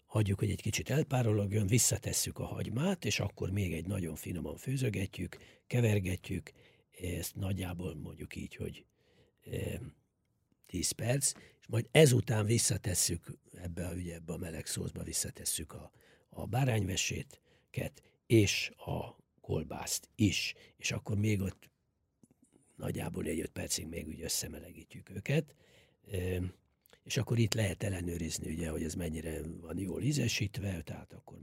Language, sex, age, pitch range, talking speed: English, male, 60-79, 90-120 Hz, 135 wpm